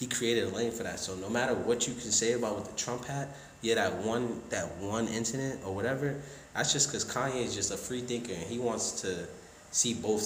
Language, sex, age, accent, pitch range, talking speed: English, male, 20-39, American, 95-120 Hz, 240 wpm